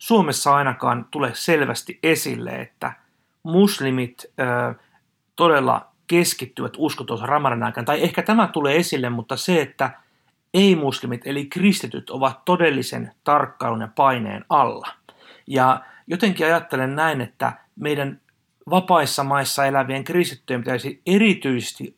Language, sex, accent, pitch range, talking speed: Finnish, male, native, 130-180 Hz, 110 wpm